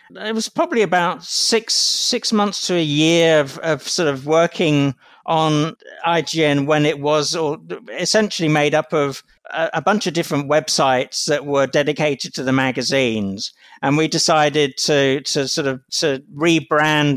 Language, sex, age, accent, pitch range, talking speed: English, male, 50-69, British, 140-170 Hz, 160 wpm